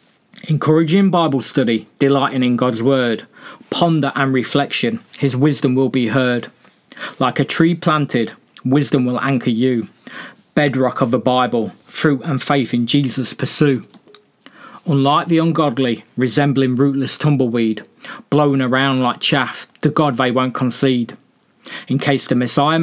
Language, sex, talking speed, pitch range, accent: English, male, 135 wpm, 130-150 Hz, British